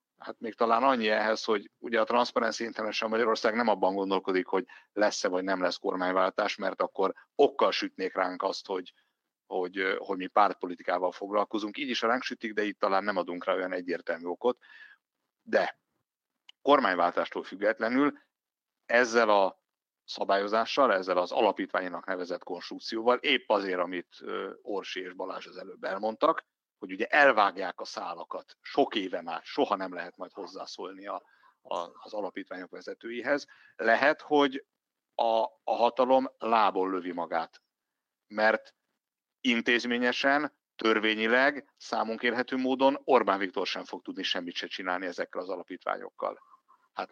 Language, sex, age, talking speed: Hungarian, male, 60-79, 140 wpm